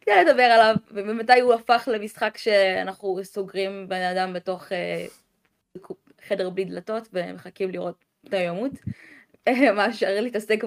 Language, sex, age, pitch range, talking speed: Hebrew, female, 20-39, 180-215 Hz, 125 wpm